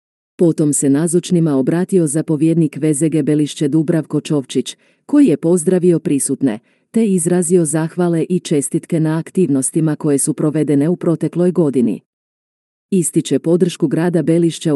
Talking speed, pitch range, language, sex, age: 120 wpm, 150-175 Hz, Croatian, female, 40-59